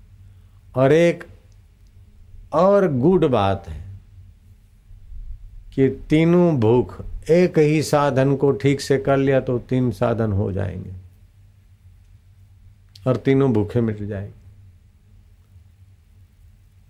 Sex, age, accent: male, 50-69, native